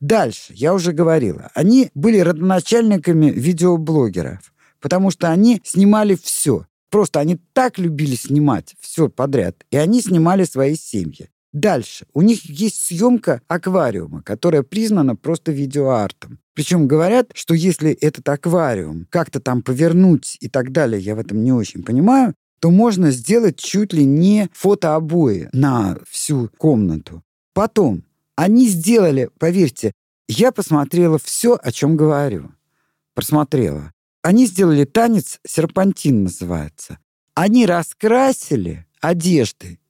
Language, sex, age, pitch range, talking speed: Russian, male, 50-69, 140-200 Hz, 125 wpm